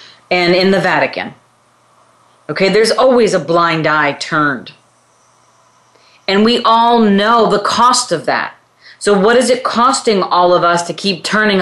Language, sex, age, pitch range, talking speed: English, female, 40-59, 145-180 Hz, 155 wpm